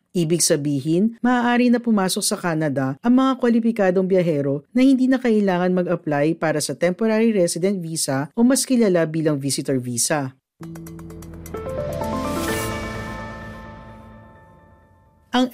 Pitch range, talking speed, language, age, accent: 145-220 Hz, 110 wpm, Filipino, 50-69, native